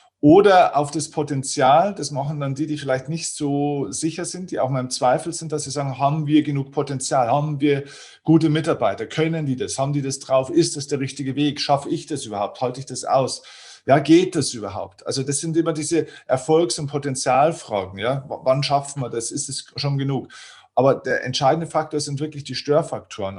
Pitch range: 130-150 Hz